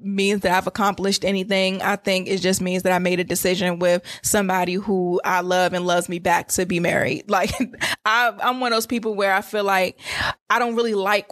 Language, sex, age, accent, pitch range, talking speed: English, female, 20-39, American, 185-215 Hz, 215 wpm